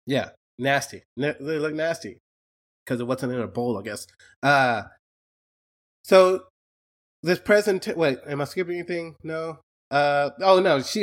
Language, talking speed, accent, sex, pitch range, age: English, 145 wpm, American, male, 110-140 Hz, 20-39